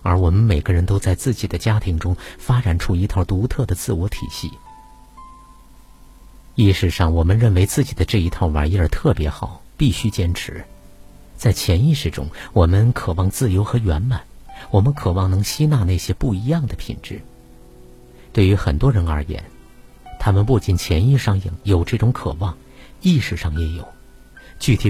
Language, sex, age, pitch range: Chinese, male, 50-69, 85-120 Hz